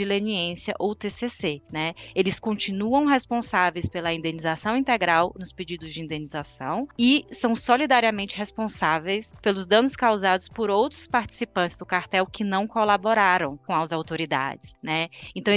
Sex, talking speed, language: female, 135 wpm, Portuguese